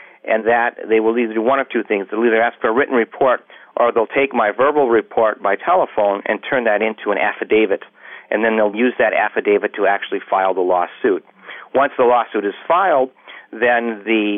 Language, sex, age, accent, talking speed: English, male, 50-69, American, 205 wpm